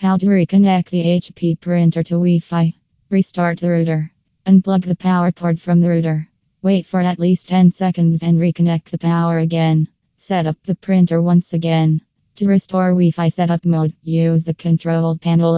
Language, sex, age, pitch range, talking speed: English, female, 20-39, 165-185 Hz, 170 wpm